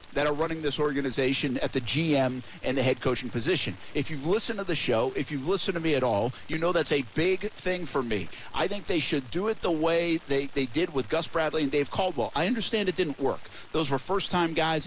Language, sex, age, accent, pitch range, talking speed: English, male, 50-69, American, 140-180 Hz, 240 wpm